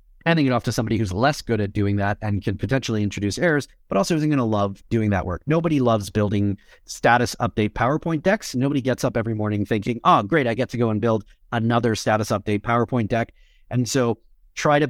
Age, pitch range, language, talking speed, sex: 30-49, 105-130 Hz, English, 220 wpm, male